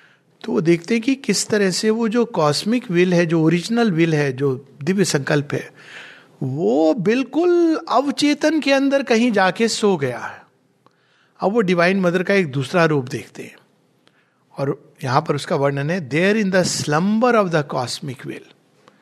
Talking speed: 175 wpm